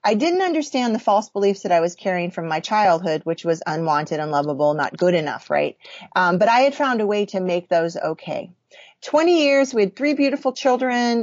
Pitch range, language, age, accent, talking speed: 190-240 Hz, English, 30-49, American, 210 wpm